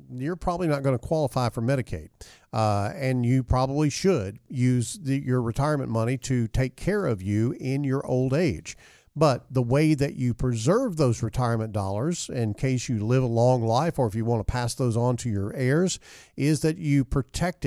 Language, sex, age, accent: English, male, 50-69, American